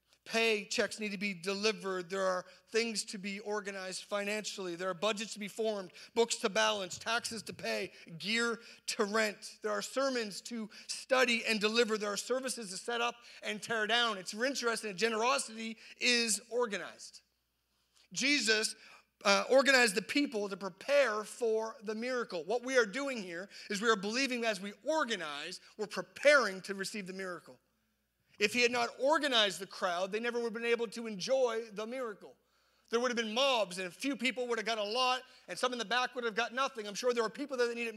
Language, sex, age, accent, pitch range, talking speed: English, male, 40-59, American, 205-245 Hz, 200 wpm